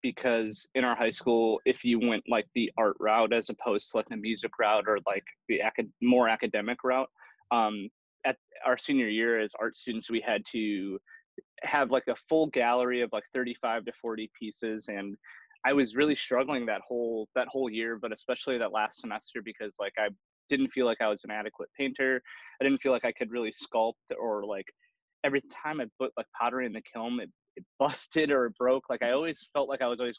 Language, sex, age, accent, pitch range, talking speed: English, male, 20-39, American, 110-135 Hz, 210 wpm